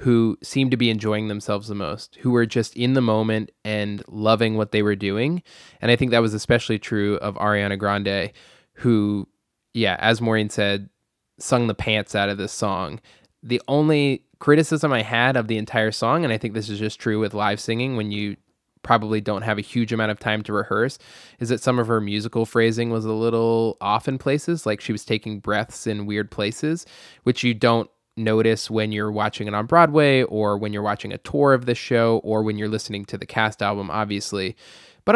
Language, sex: English, male